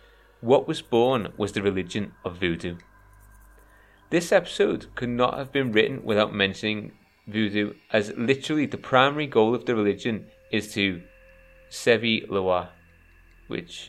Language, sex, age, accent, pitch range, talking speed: English, male, 30-49, British, 95-125 Hz, 135 wpm